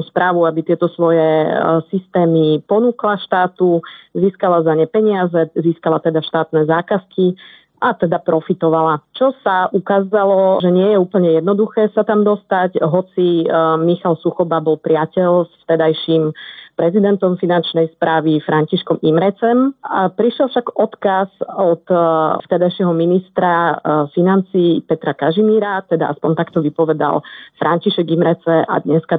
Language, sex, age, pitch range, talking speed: Slovak, female, 30-49, 160-190 Hz, 120 wpm